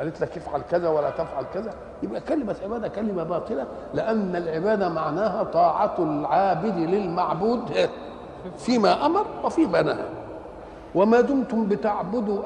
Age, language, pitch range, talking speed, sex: 50-69, Arabic, 165-220 Hz, 120 wpm, male